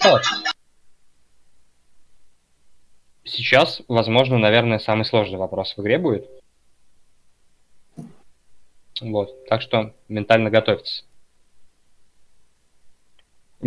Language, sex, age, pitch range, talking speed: Russian, male, 20-39, 105-130 Hz, 60 wpm